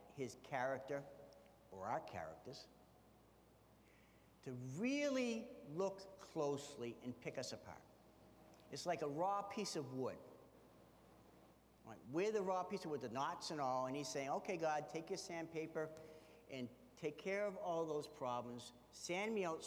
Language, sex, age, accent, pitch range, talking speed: English, male, 60-79, American, 130-170 Hz, 145 wpm